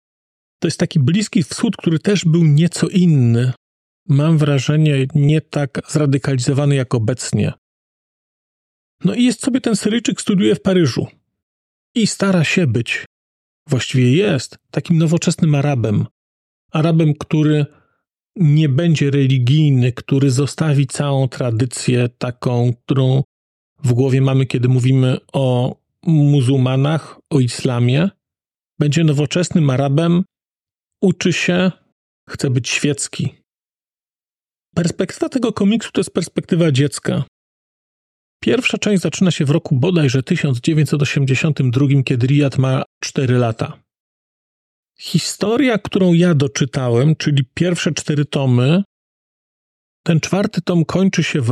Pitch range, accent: 130-170 Hz, native